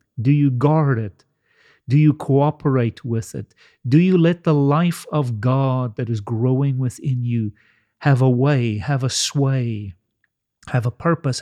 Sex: male